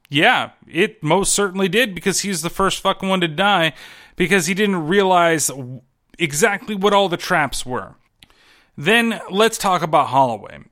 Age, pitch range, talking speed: 30-49, 145-190 Hz, 155 wpm